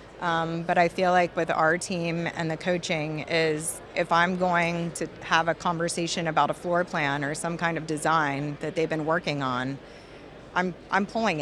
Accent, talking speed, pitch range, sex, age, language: American, 190 wpm, 155-180 Hz, female, 30-49, English